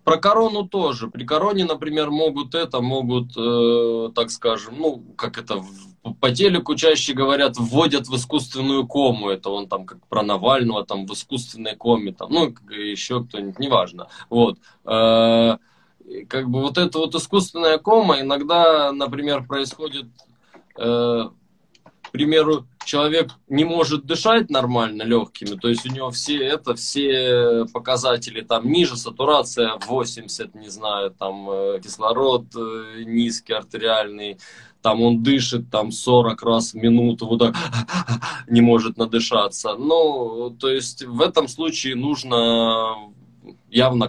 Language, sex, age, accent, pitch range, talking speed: Russian, male, 20-39, native, 115-140 Hz, 130 wpm